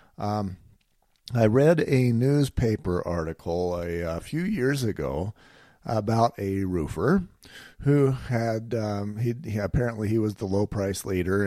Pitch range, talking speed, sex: 100-120 Hz, 135 wpm, male